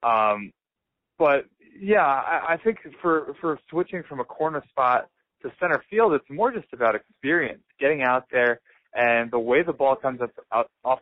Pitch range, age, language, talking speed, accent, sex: 115-140 Hz, 20-39, English, 180 wpm, American, male